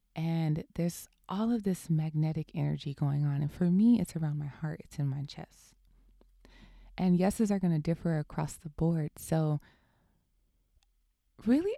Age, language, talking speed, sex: 20-39, English, 160 wpm, female